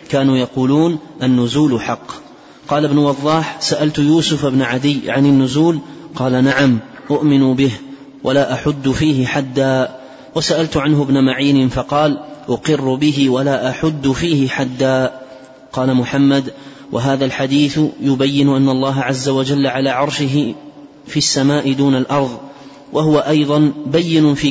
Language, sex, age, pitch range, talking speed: Arabic, male, 30-49, 135-145 Hz, 125 wpm